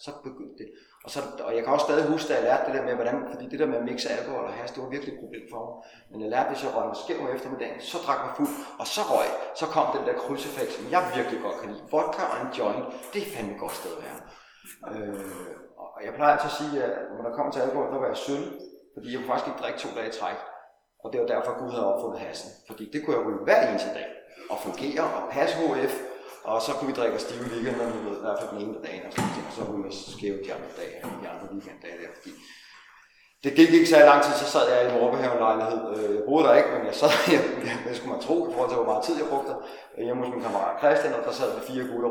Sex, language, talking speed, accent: male, Danish, 280 wpm, native